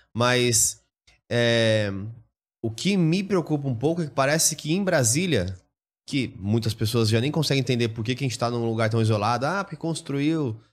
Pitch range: 110-155 Hz